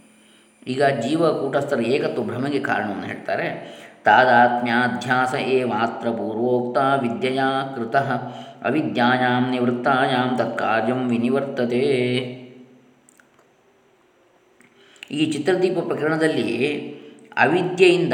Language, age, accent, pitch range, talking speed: Kannada, 20-39, native, 115-135 Hz, 50 wpm